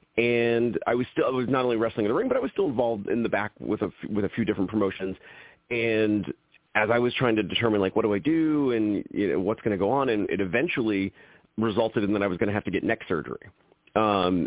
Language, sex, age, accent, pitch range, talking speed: English, male, 40-59, American, 100-120 Hz, 265 wpm